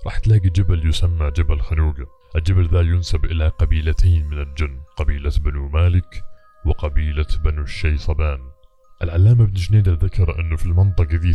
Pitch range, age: 80-95 Hz, 20-39